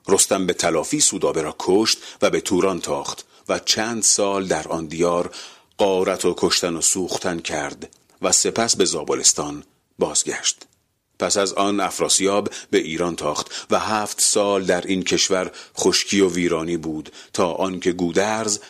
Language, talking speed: Persian, 150 wpm